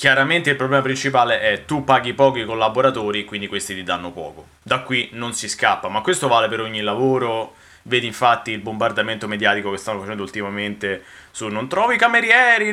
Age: 20-39